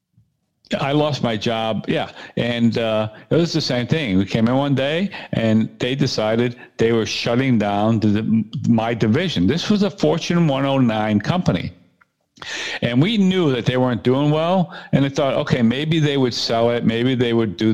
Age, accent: 50-69, American